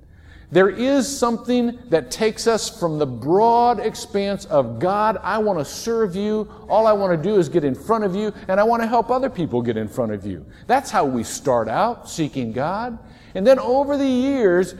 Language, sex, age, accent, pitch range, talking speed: English, male, 50-69, American, 145-240 Hz, 210 wpm